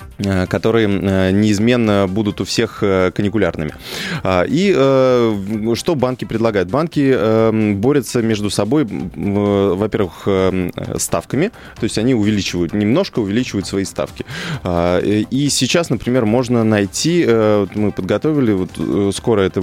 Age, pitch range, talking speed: 20-39, 95-125 Hz, 100 wpm